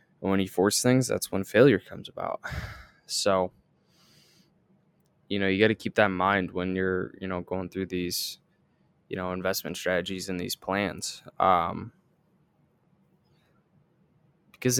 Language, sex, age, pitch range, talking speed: English, male, 20-39, 95-125 Hz, 145 wpm